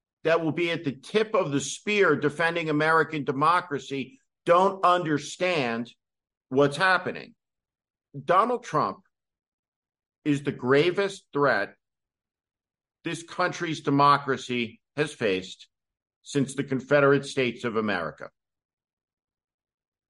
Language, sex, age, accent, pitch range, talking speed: English, male, 50-69, American, 135-170 Hz, 100 wpm